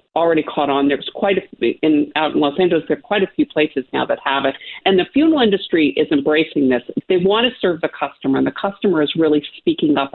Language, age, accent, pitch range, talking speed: English, 50-69, American, 160-220 Hz, 245 wpm